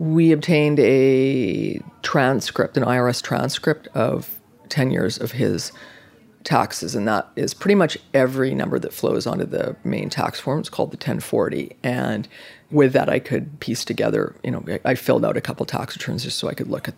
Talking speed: 185 wpm